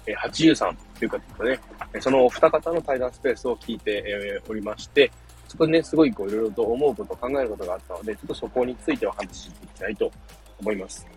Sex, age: male, 20-39